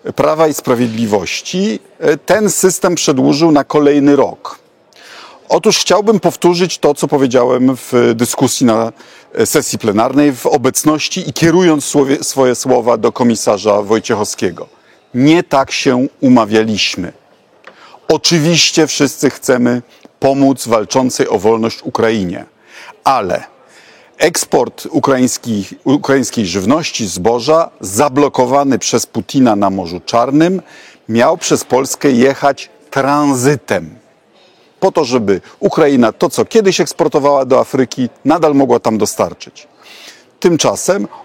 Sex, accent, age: male, native, 50-69